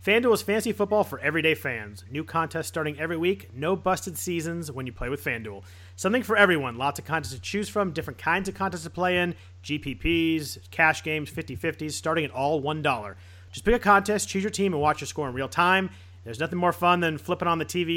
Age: 30-49